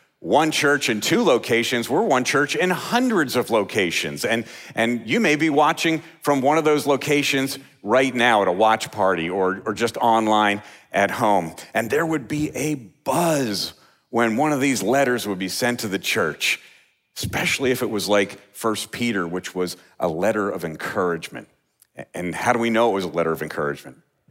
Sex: male